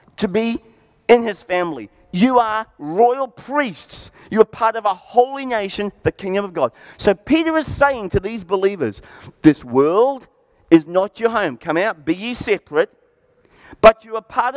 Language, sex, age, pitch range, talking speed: English, male, 40-59, 160-245 Hz, 175 wpm